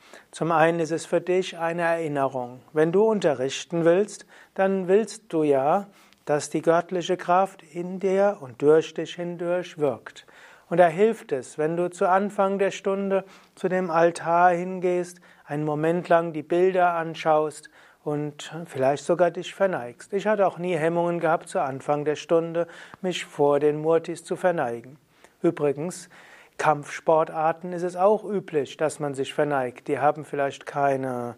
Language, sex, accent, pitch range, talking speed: German, male, German, 145-180 Hz, 155 wpm